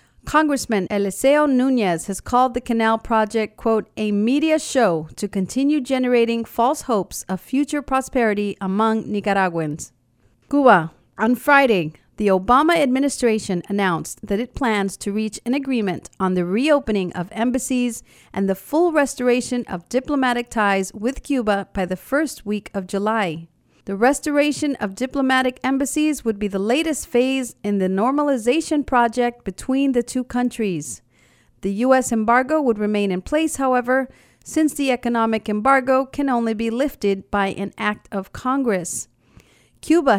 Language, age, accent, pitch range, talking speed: English, 40-59, American, 200-260 Hz, 145 wpm